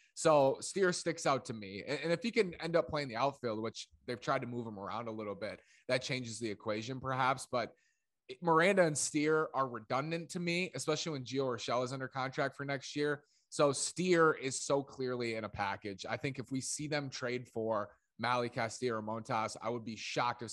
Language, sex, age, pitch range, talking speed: English, male, 20-39, 115-150 Hz, 215 wpm